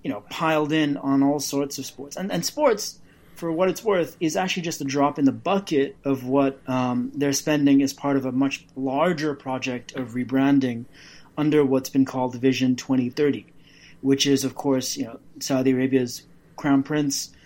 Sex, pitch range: male, 130-150 Hz